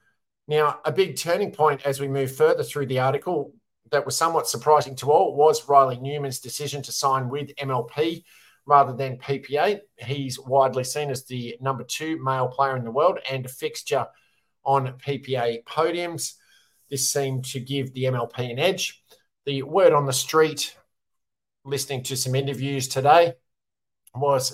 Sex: male